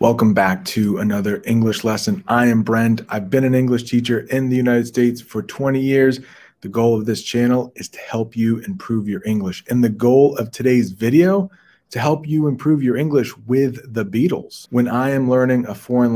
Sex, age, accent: male, 30-49, American